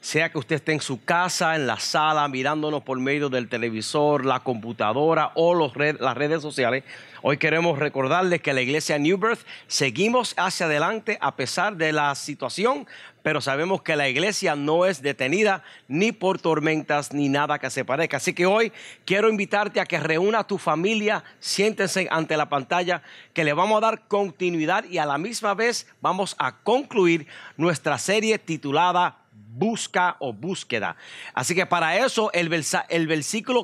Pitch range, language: 150-205 Hz, English